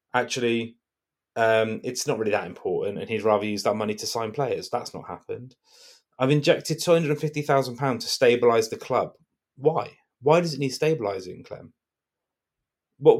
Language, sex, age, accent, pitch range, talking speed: English, male, 30-49, British, 125-170 Hz, 175 wpm